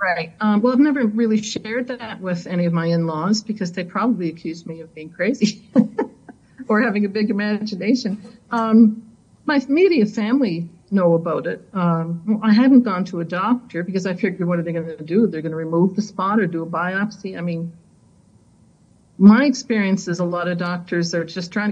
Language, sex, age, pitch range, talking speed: English, female, 50-69, 170-215 Hz, 195 wpm